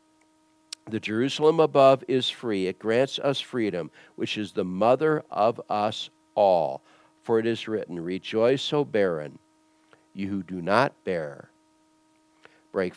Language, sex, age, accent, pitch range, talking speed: English, male, 60-79, American, 100-160 Hz, 135 wpm